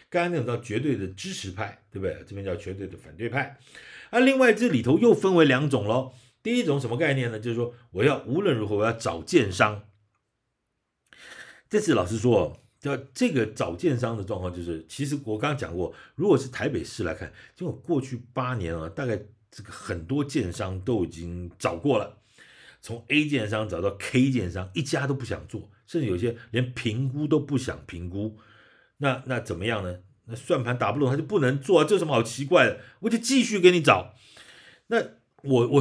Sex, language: male, Chinese